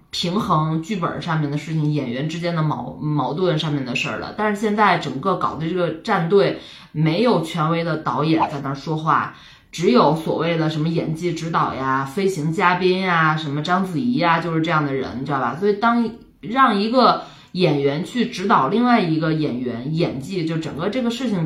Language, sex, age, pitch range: Chinese, female, 20-39, 155-220 Hz